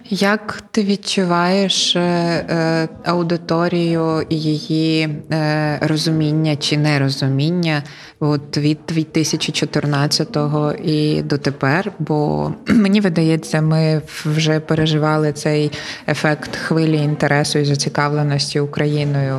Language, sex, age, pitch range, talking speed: Ukrainian, female, 20-39, 140-160 Hz, 95 wpm